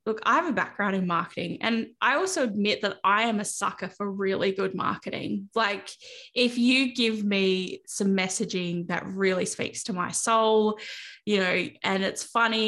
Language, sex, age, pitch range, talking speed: English, female, 10-29, 190-220 Hz, 180 wpm